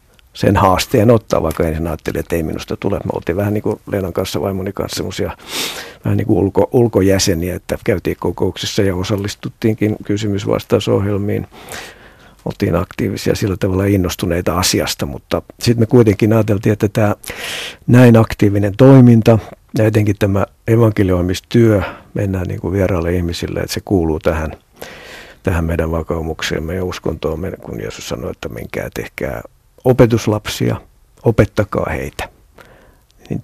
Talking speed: 130 wpm